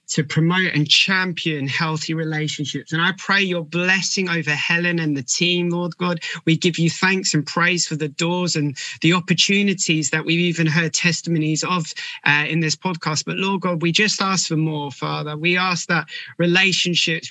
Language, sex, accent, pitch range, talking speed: English, male, British, 155-185 Hz, 185 wpm